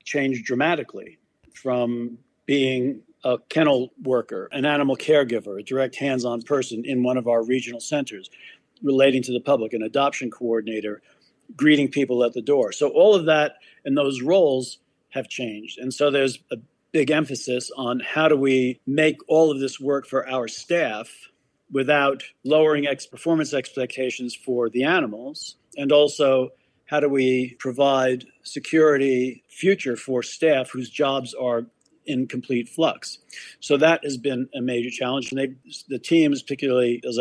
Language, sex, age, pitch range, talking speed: English, male, 50-69, 125-145 Hz, 150 wpm